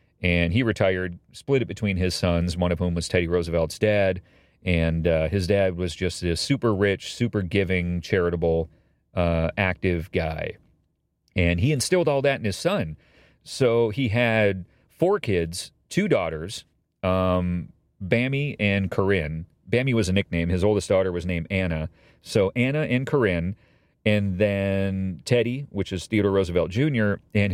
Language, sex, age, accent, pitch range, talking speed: English, male, 40-59, American, 85-105 Hz, 155 wpm